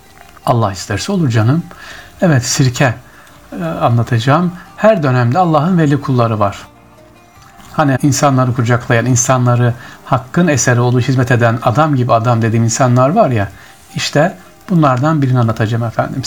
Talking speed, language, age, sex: 130 wpm, Turkish, 60-79, male